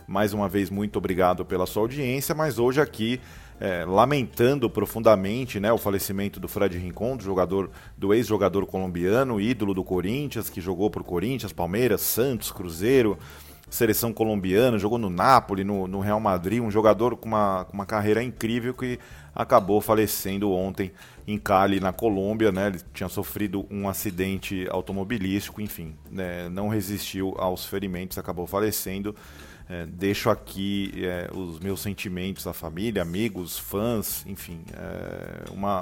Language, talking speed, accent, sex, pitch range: Portuguese, 145 wpm, Brazilian, male, 95-115 Hz